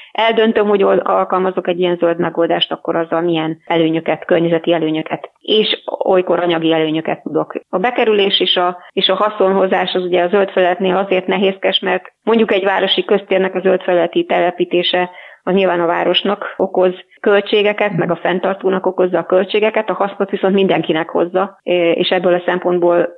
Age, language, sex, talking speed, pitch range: 30-49, Hungarian, female, 160 wpm, 170-190 Hz